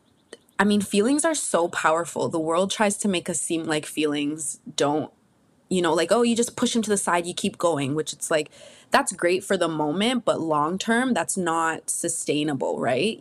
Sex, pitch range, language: female, 155-190 Hz, English